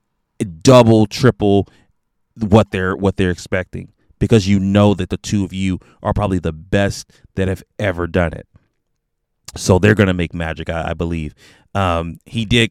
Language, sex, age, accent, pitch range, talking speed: English, male, 30-49, American, 95-110 Hz, 165 wpm